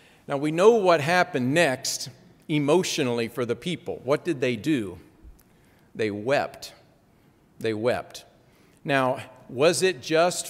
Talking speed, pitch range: 125 wpm, 135-170 Hz